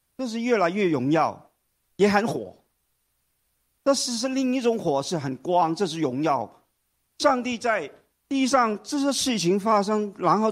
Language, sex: Chinese, male